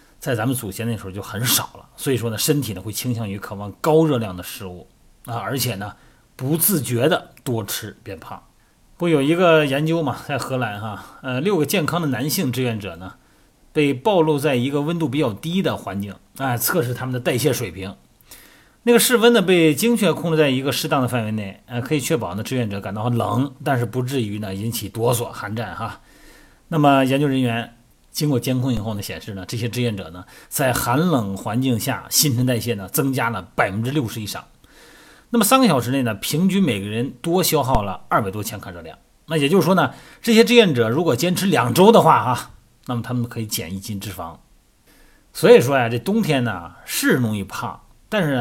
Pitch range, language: 110-150 Hz, Chinese